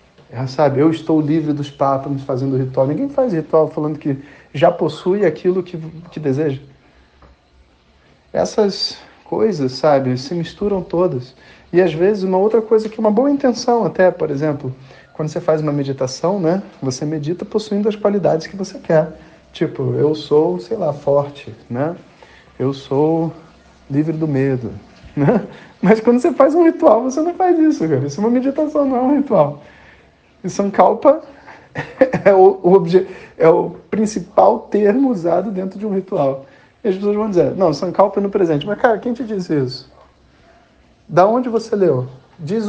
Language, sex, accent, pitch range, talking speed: Portuguese, male, Brazilian, 140-205 Hz, 170 wpm